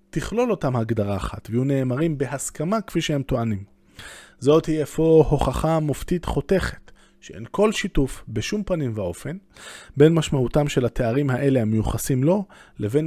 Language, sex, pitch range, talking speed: Hebrew, male, 120-170 Hz, 140 wpm